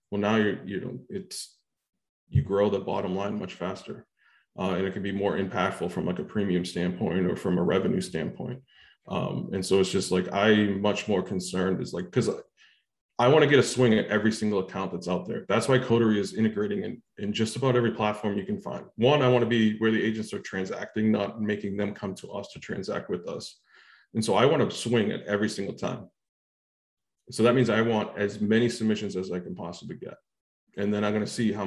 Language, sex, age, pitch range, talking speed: English, male, 20-39, 95-110 Hz, 230 wpm